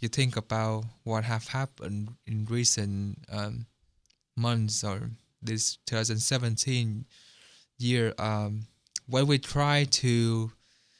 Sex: male